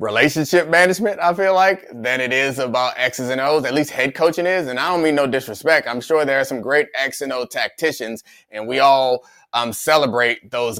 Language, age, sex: English, 20-39, male